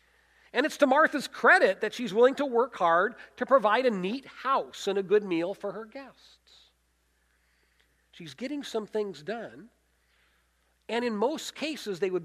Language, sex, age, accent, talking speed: English, male, 50-69, American, 165 wpm